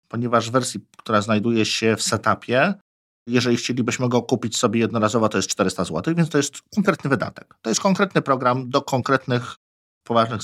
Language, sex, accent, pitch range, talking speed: Polish, male, native, 110-145 Hz, 170 wpm